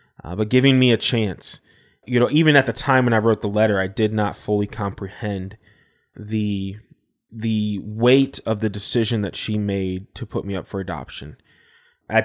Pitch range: 100-115 Hz